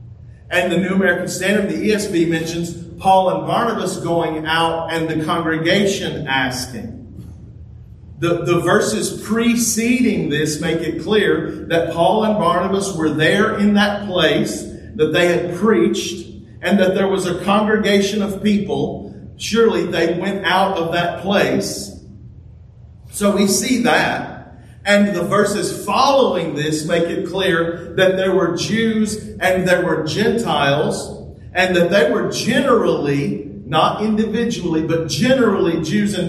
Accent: American